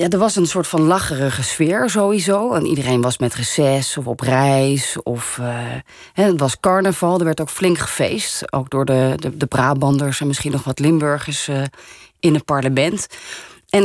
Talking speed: 185 wpm